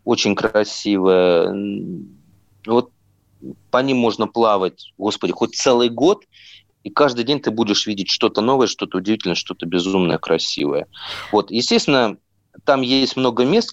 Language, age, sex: Russian, 30-49, male